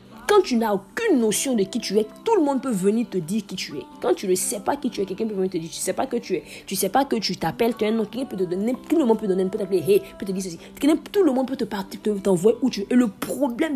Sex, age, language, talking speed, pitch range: female, 40-59, French, 350 wpm, 185-235 Hz